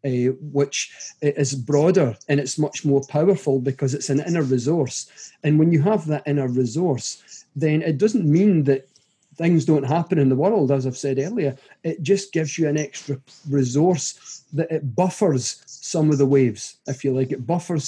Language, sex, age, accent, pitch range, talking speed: English, male, 40-59, British, 135-155 Hz, 185 wpm